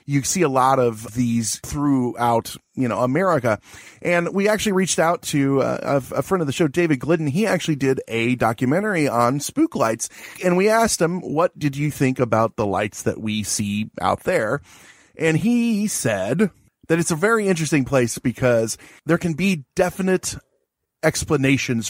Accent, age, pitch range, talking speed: American, 30-49, 120-170 Hz, 175 wpm